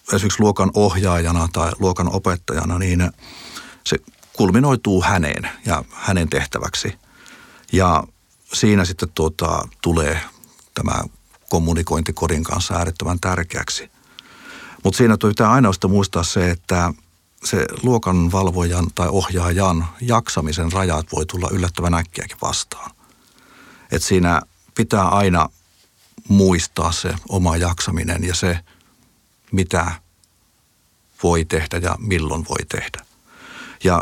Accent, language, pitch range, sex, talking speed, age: native, Finnish, 85-95 Hz, male, 105 wpm, 50-69